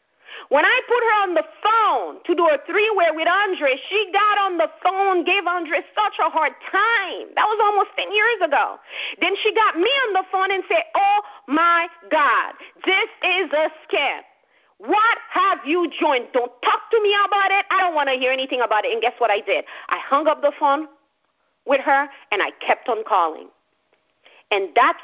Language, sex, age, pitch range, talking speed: English, female, 40-59, 260-395 Hz, 200 wpm